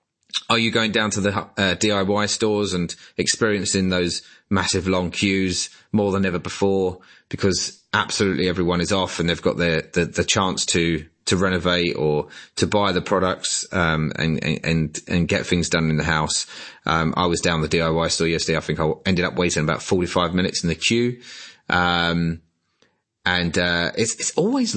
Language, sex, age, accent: English, male, 30-49, British